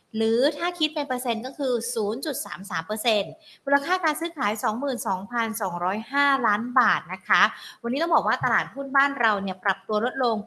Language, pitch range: Thai, 200-250 Hz